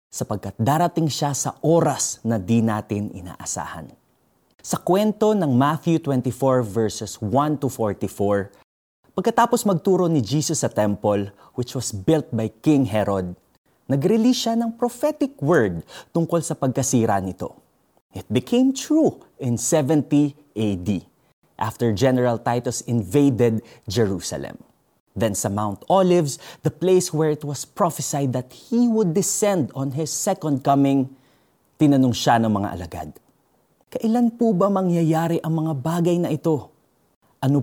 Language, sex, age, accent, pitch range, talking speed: Filipino, male, 20-39, native, 110-160 Hz, 130 wpm